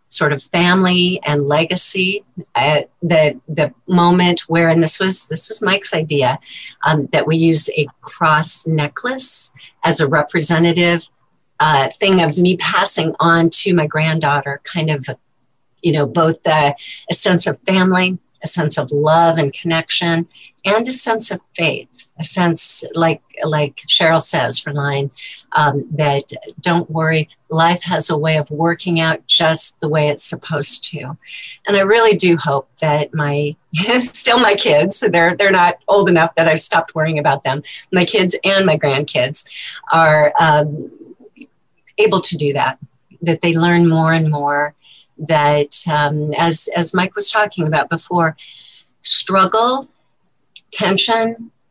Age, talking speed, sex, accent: 50-69, 150 wpm, female, American